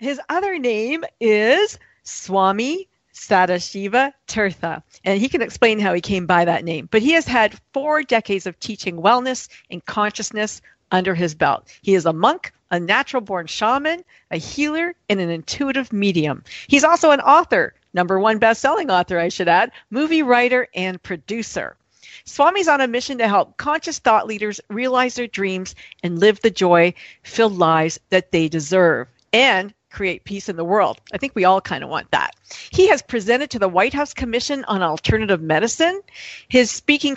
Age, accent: 50-69, American